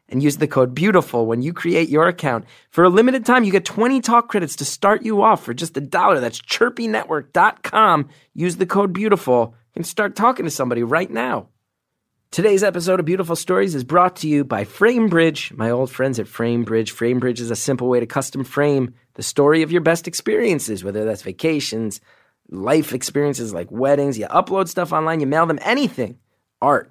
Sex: male